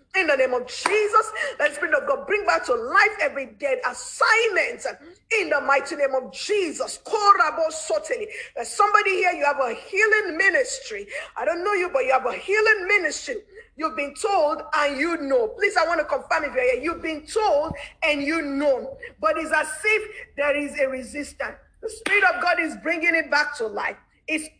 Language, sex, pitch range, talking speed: English, female, 295-420 Hz, 200 wpm